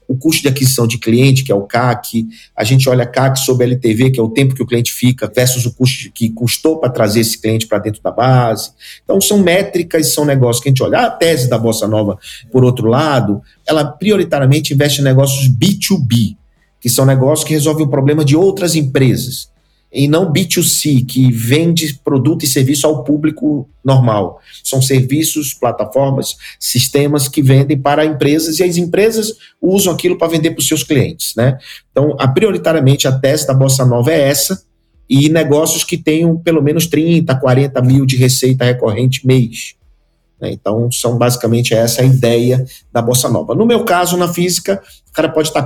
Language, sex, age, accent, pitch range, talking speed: Portuguese, male, 50-69, Brazilian, 125-155 Hz, 190 wpm